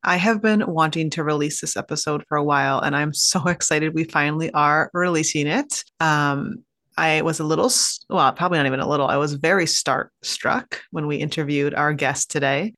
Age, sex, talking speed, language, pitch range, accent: 30-49, female, 195 wpm, English, 155-200 Hz, American